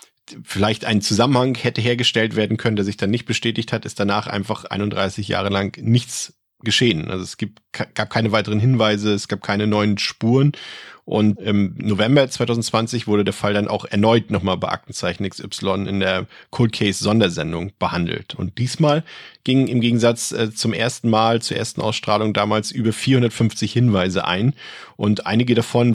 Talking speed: 165 wpm